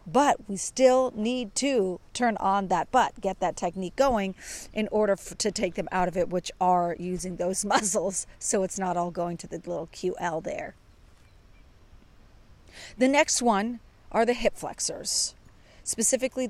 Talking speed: 165 wpm